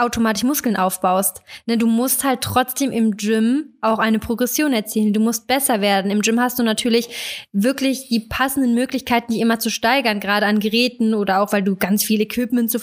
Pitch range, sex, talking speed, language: 220-270 Hz, female, 195 wpm, German